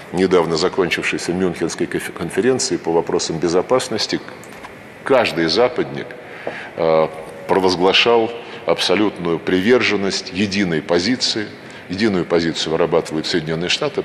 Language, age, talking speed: Russian, 50-69, 80 wpm